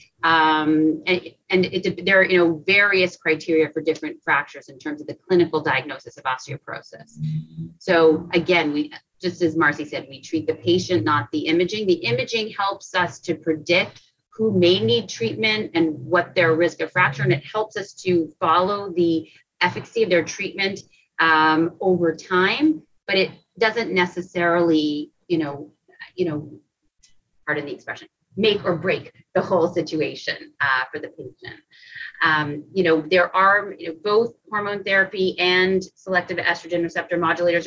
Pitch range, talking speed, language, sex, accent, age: 160-190 Hz, 160 wpm, English, female, American, 30-49